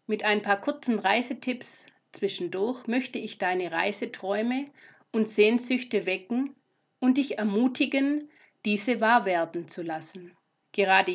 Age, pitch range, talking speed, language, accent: 50-69, 195-245 Hz, 120 wpm, German, German